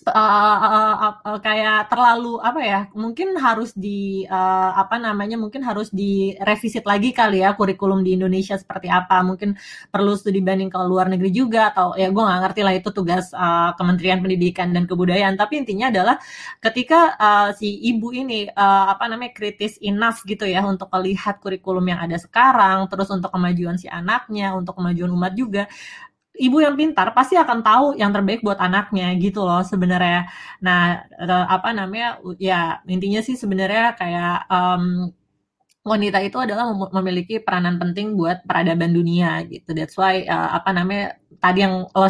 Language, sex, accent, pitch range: English, female, Indonesian, 180-215 Hz